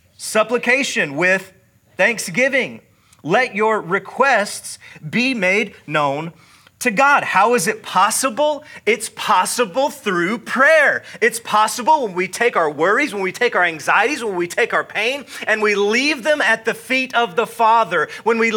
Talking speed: 155 wpm